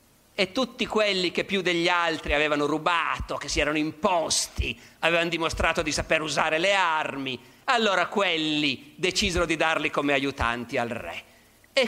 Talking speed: 150 wpm